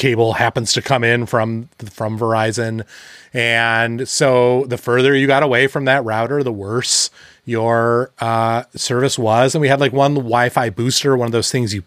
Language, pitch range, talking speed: English, 110-135 Hz, 180 wpm